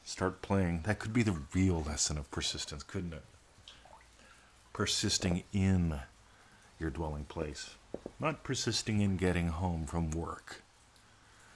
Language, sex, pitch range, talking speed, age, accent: English, male, 85-105 Hz, 125 wpm, 40-59, American